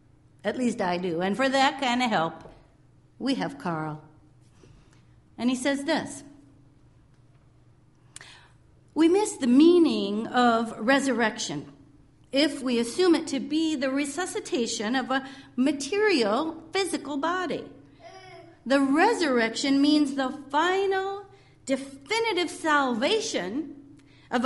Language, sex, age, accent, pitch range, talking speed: English, female, 50-69, American, 210-315 Hz, 110 wpm